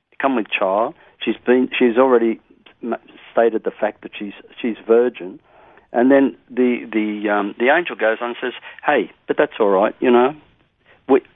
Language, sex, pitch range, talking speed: English, male, 110-130 Hz, 170 wpm